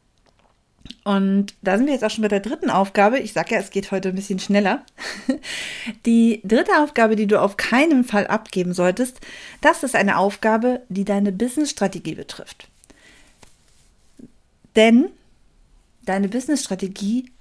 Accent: German